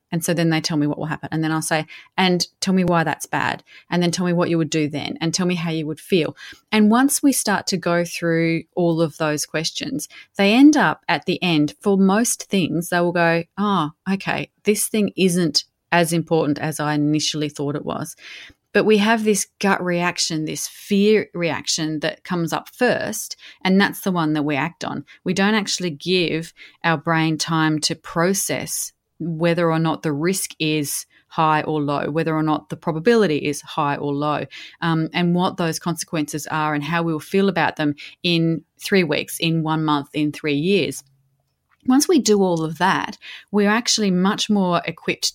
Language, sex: English, female